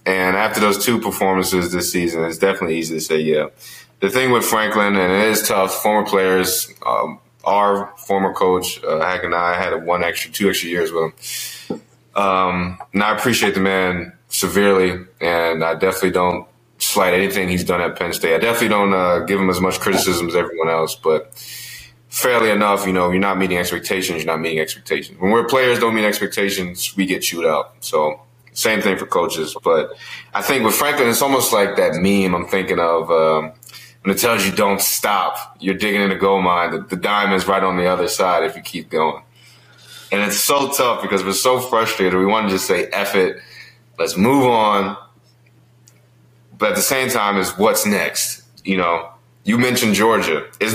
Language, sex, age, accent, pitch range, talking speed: English, male, 20-39, American, 90-110 Hz, 200 wpm